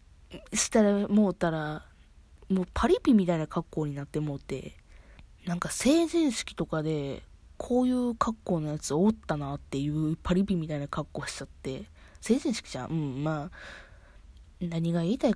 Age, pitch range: 20-39, 150-215 Hz